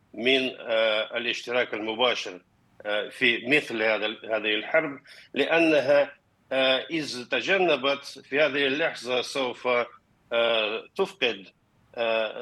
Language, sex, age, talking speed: Arabic, male, 50-69, 70 wpm